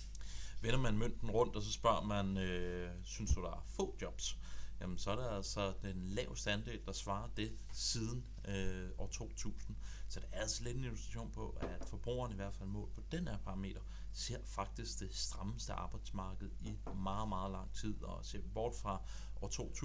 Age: 30-49